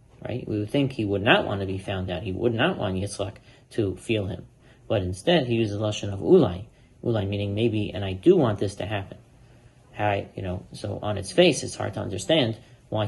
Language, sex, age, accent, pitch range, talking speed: English, male, 40-59, American, 105-125 Hz, 230 wpm